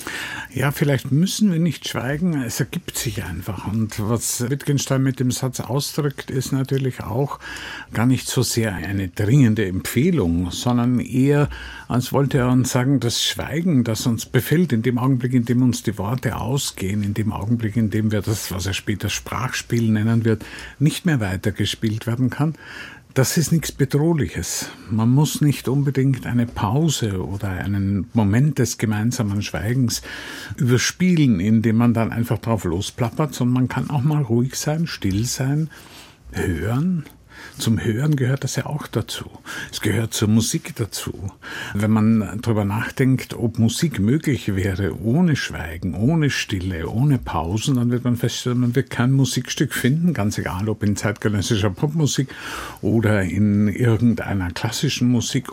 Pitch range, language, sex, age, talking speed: 105-135 Hz, German, male, 50-69, 155 wpm